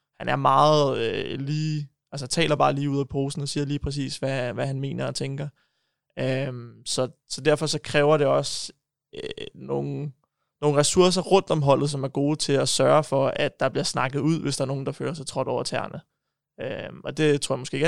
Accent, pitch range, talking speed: native, 135-155 Hz, 220 wpm